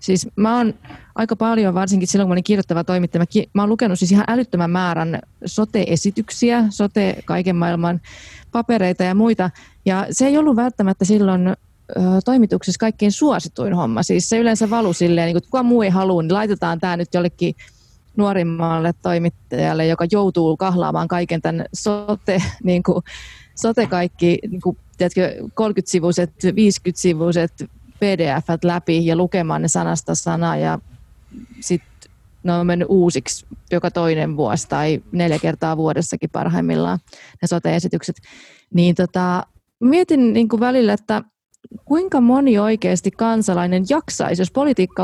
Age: 30-49